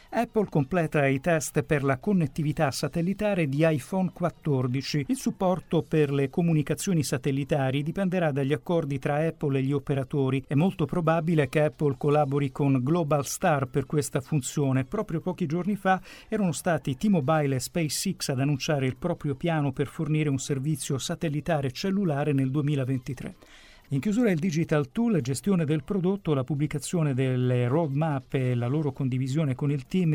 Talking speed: 155 wpm